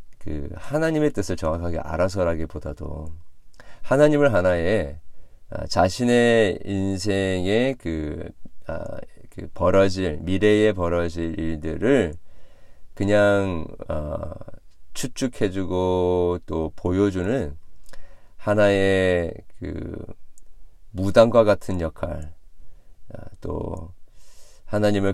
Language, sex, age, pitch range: Korean, male, 40-59, 80-100 Hz